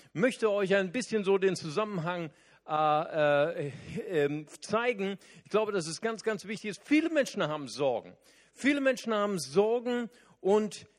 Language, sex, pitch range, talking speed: German, male, 165-220 Hz, 160 wpm